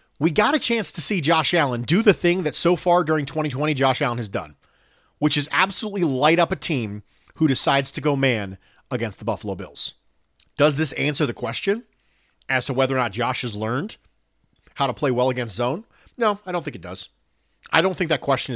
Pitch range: 110-165 Hz